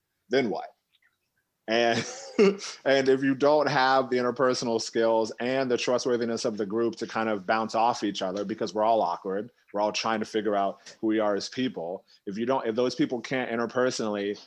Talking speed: 195 wpm